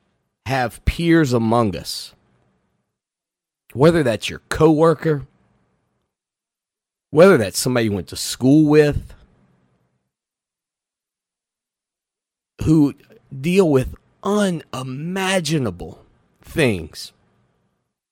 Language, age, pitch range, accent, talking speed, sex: English, 40-59, 110-170 Hz, American, 70 wpm, male